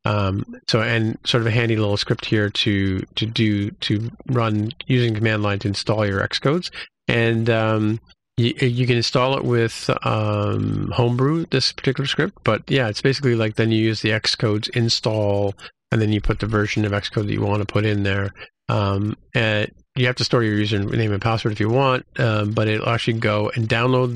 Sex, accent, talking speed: male, American, 200 wpm